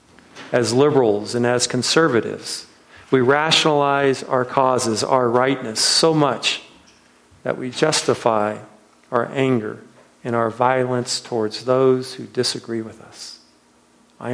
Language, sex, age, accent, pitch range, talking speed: English, male, 50-69, American, 110-135 Hz, 115 wpm